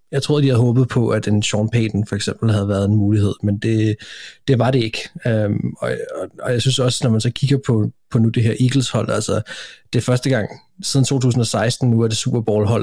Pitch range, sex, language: 105-125 Hz, male, Danish